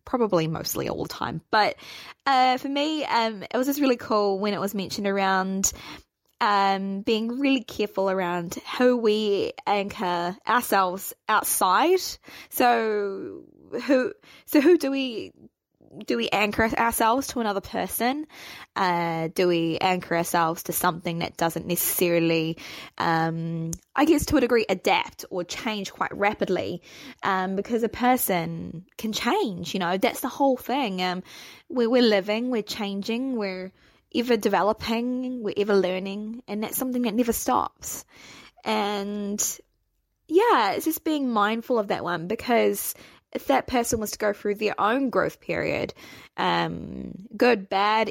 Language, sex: English, female